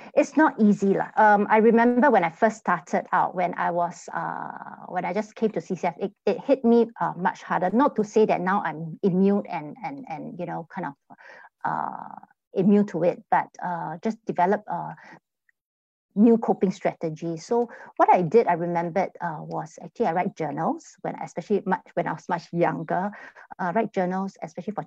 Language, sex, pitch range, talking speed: English, female, 175-215 Hz, 190 wpm